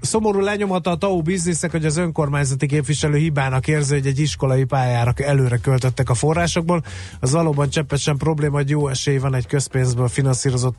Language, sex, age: Hungarian, male, 30-49